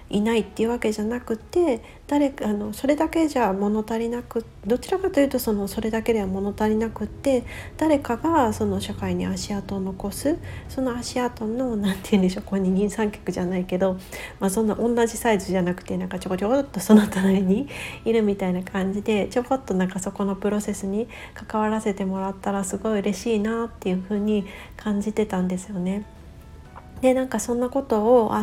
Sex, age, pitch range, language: female, 40-59, 195-240 Hz, Japanese